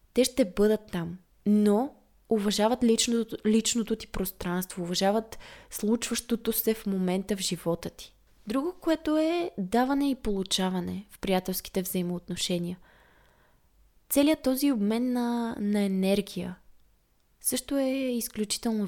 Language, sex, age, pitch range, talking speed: Bulgarian, female, 20-39, 185-230 Hz, 115 wpm